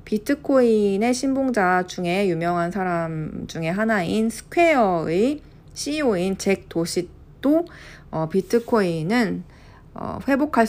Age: 40-59